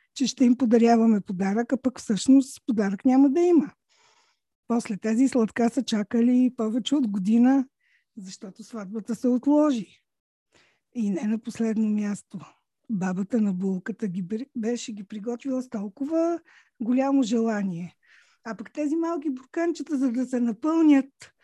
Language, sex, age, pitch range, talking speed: Bulgarian, female, 50-69, 220-290 Hz, 135 wpm